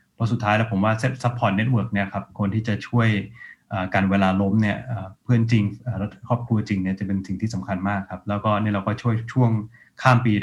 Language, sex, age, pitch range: Thai, male, 20-39, 105-125 Hz